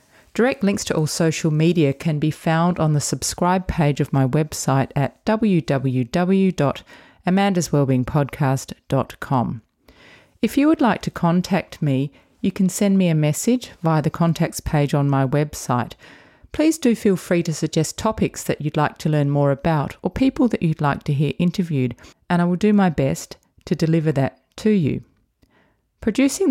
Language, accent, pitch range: English, Australian, 150-195 Hz